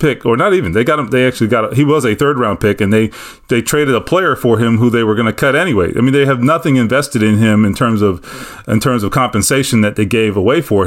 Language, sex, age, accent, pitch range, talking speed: English, male, 30-49, American, 100-130 Hz, 280 wpm